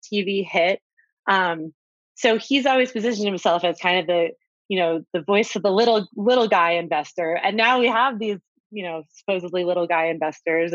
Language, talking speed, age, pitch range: English, 185 wpm, 30-49, 170-220 Hz